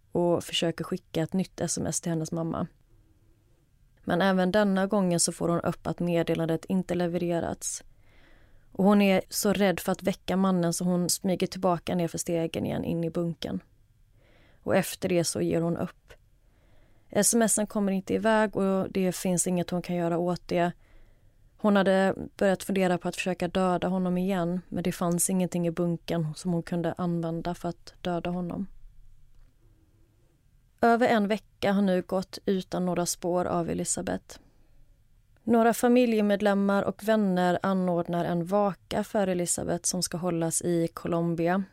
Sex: female